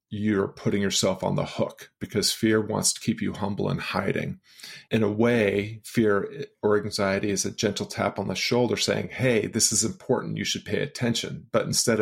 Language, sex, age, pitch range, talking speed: English, male, 40-59, 100-110 Hz, 195 wpm